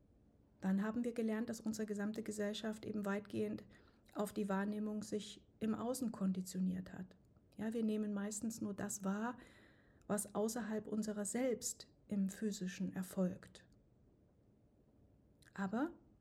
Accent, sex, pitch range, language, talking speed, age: German, female, 195-230 Hz, German, 120 wpm, 50-69